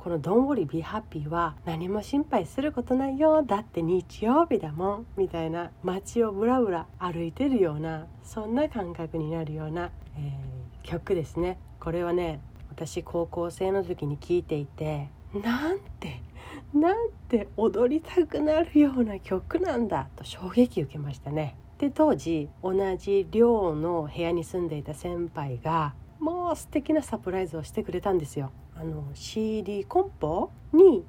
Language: Japanese